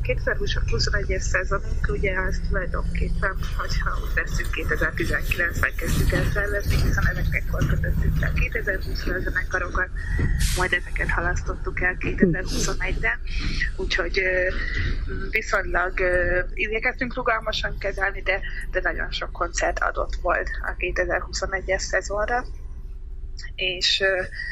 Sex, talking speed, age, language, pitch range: female, 105 wpm, 20-39, Hungarian, 175-195 Hz